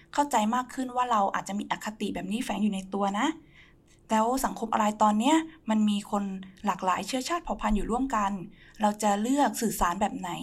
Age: 20-39